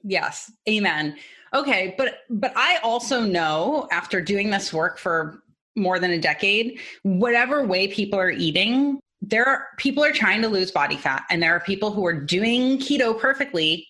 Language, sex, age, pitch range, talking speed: English, female, 30-49, 170-235 Hz, 175 wpm